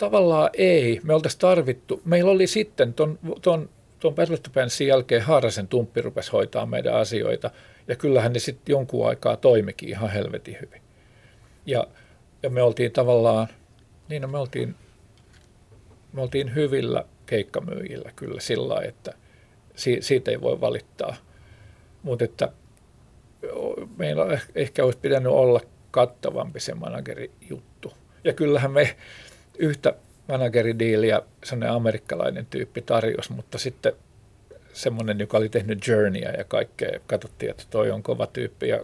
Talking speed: 130 wpm